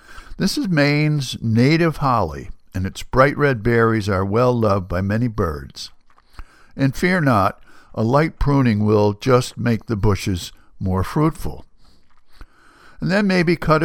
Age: 60-79